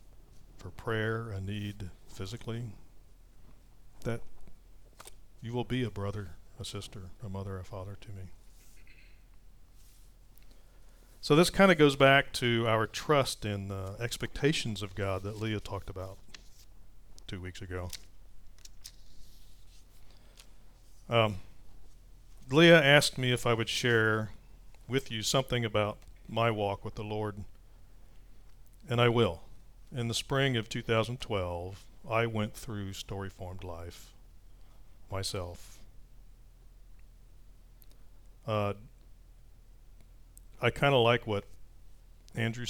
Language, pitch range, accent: English, 95-115 Hz, American